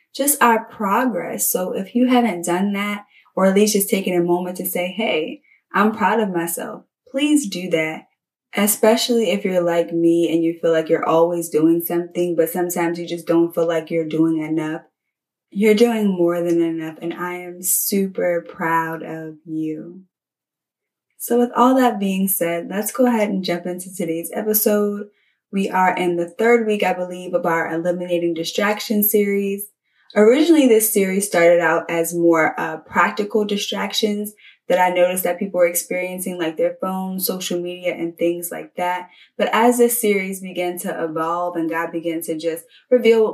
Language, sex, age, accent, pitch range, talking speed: English, female, 10-29, American, 165-205 Hz, 175 wpm